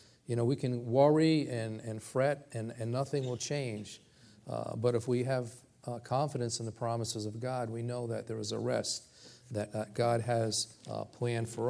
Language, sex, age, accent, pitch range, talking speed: English, male, 40-59, American, 120-145 Hz, 200 wpm